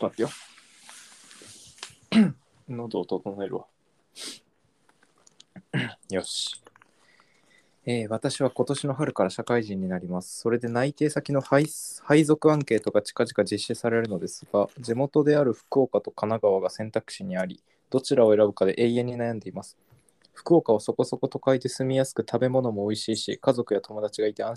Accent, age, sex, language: native, 20-39, male, Japanese